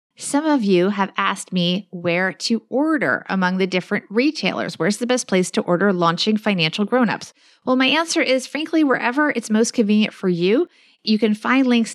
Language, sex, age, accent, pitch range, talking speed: English, female, 30-49, American, 175-235 Hz, 185 wpm